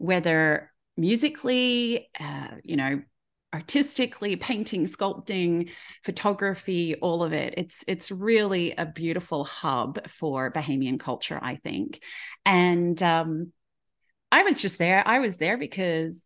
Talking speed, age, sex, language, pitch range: 120 wpm, 30-49, female, English, 160-210 Hz